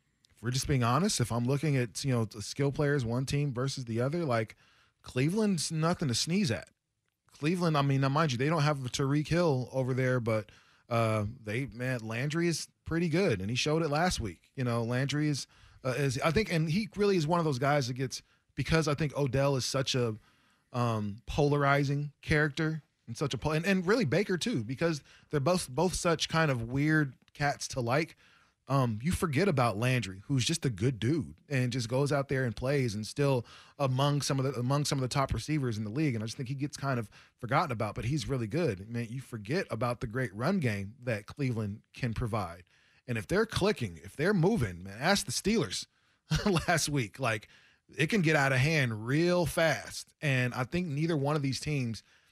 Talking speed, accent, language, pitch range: 215 wpm, American, English, 120-155 Hz